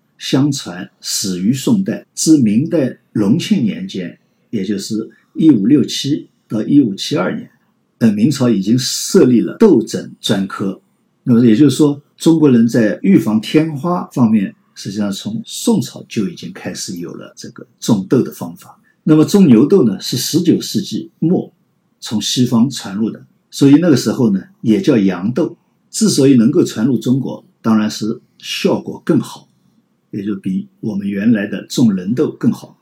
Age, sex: 50-69, male